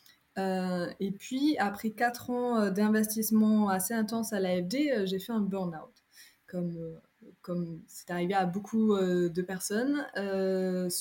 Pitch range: 190-235 Hz